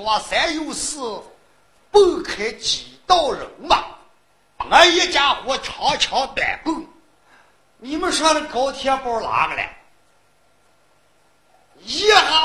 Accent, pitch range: native, 240-345 Hz